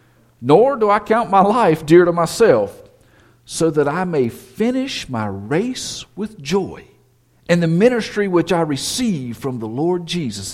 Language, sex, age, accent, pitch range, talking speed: English, male, 50-69, American, 115-180 Hz, 160 wpm